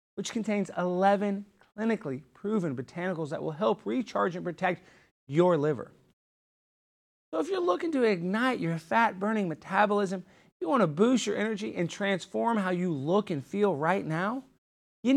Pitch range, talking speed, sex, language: 150-210 Hz, 155 wpm, male, English